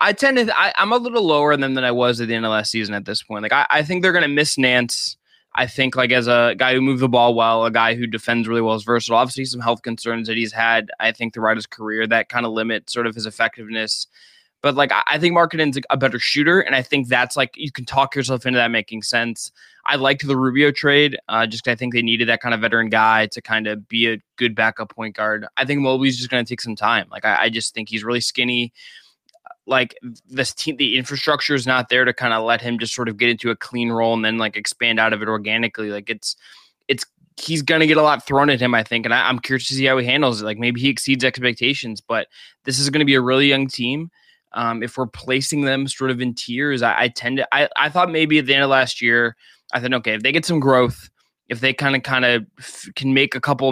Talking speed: 275 wpm